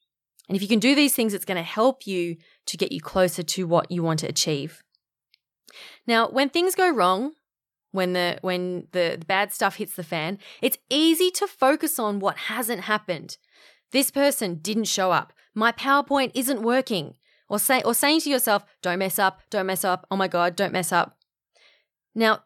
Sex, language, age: female, English, 20-39